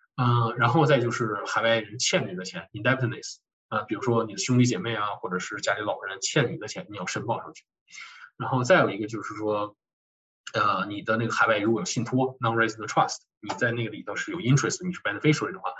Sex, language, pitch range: male, Chinese, 115-150 Hz